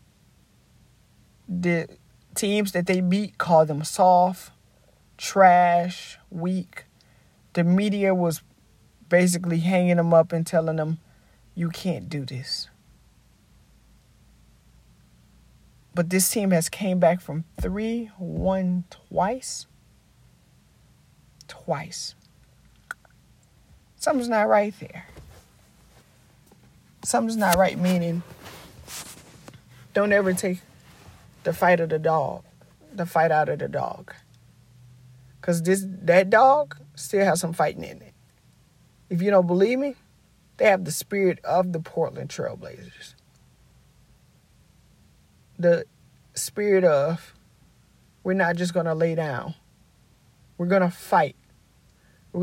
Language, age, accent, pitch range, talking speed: English, 40-59, American, 155-190 Hz, 110 wpm